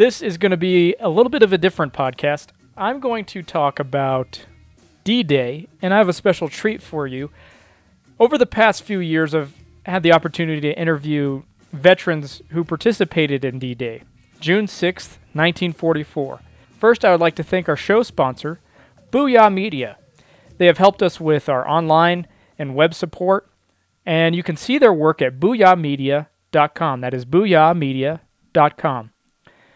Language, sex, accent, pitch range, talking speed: English, male, American, 140-185 Hz, 155 wpm